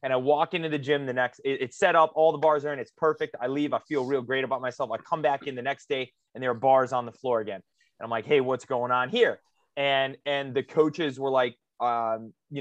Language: English